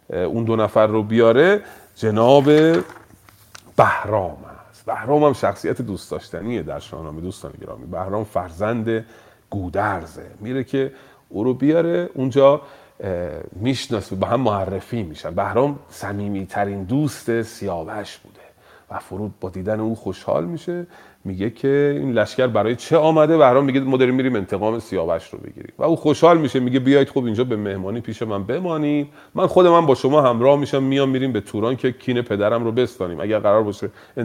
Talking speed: 160 wpm